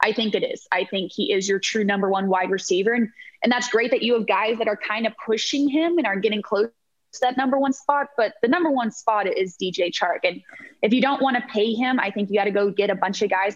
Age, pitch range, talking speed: 20-39, 200-250 Hz, 285 wpm